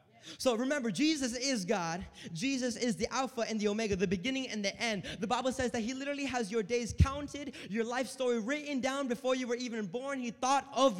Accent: American